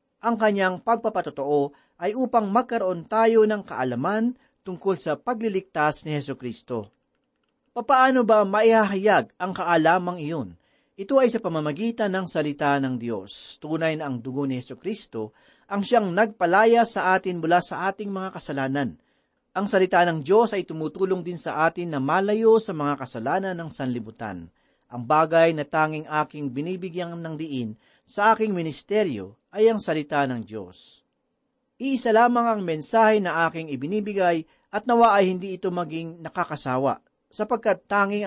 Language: Filipino